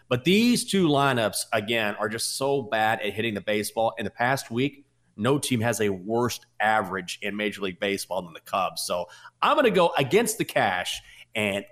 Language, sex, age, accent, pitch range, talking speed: English, male, 30-49, American, 115-170 Hz, 195 wpm